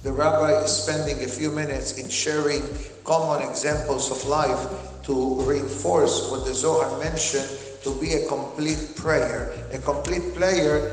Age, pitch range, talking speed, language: 50-69, 145-180 Hz, 150 wpm, English